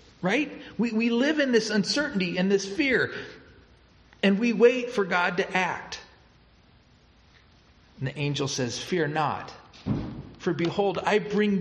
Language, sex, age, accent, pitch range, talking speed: English, male, 40-59, American, 170-235 Hz, 140 wpm